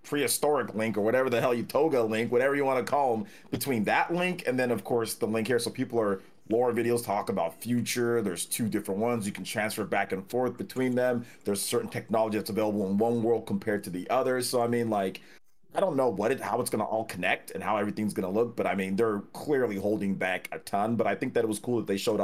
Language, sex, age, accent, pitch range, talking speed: English, male, 30-49, American, 100-120 Hz, 260 wpm